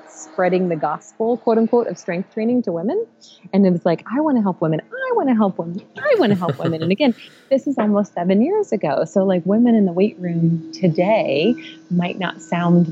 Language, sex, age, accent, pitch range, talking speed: English, female, 30-49, American, 165-200 Hz, 225 wpm